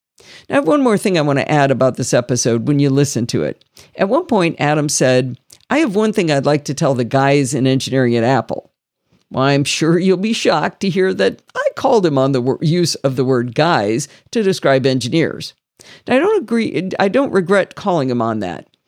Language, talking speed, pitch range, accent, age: English, 225 wpm, 135-195 Hz, American, 50-69